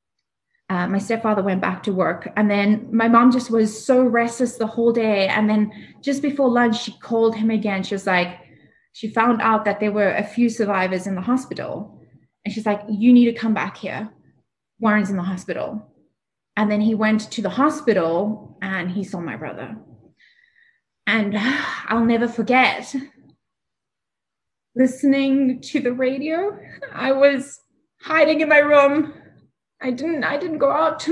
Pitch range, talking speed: 220-290 Hz, 170 wpm